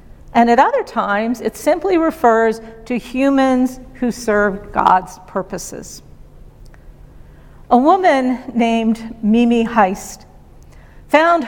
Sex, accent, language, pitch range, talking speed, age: female, American, English, 200-245 Hz, 100 wpm, 50-69